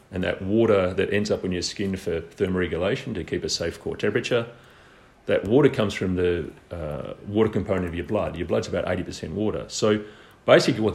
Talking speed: 195 wpm